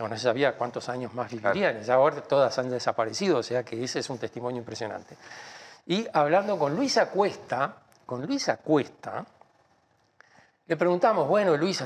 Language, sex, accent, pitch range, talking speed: Spanish, male, Argentinian, 130-190 Hz, 165 wpm